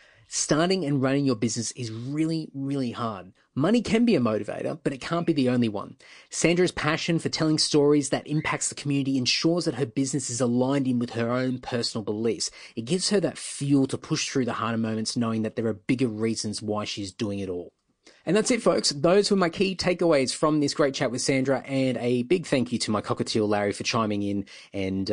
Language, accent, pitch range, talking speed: English, Australian, 105-150 Hz, 220 wpm